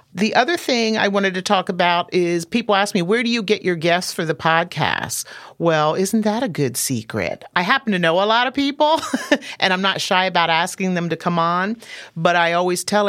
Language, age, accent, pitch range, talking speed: English, 40-59, American, 150-185 Hz, 225 wpm